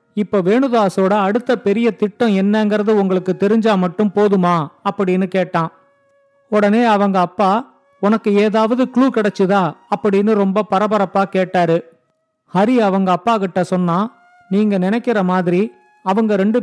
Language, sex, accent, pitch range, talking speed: Tamil, male, native, 190-220 Hz, 120 wpm